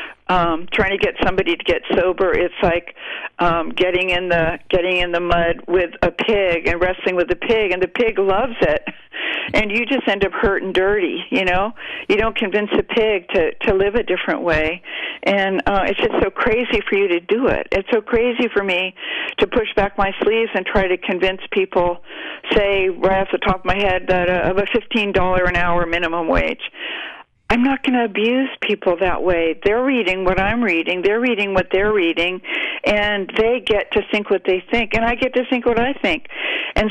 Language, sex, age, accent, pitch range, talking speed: English, female, 50-69, American, 180-230 Hz, 210 wpm